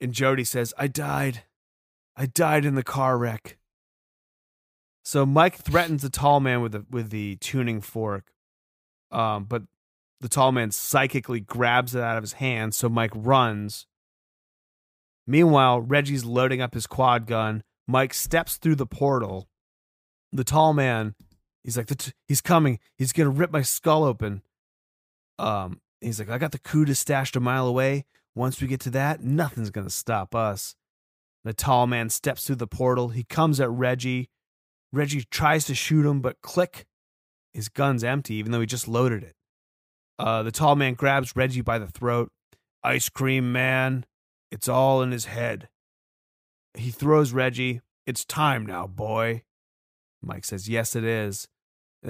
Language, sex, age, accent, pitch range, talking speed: English, male, 30-49, American, 110-140 Hz, 165 wpm